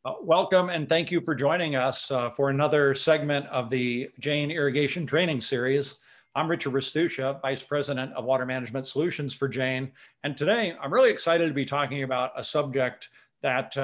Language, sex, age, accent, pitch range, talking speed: English, male, 50-69, American, 130-155 Hz, 180 wpm